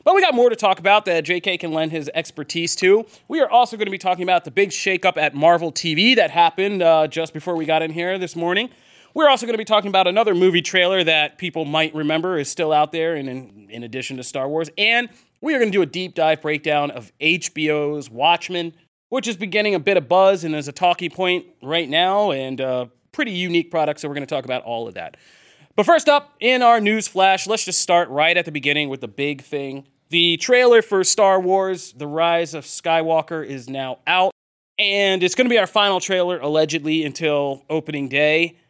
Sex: male